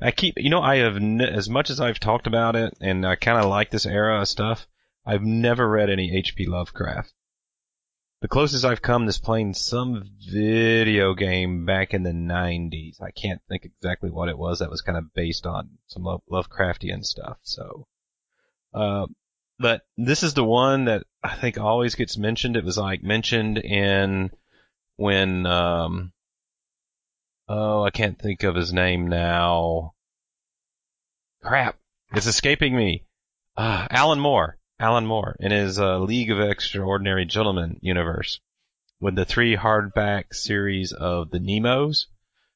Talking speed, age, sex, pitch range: 150 wpm, 30-49, male, 95-115 Hz